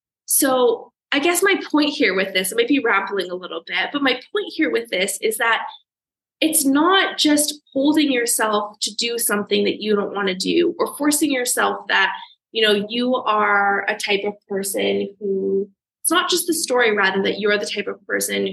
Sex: female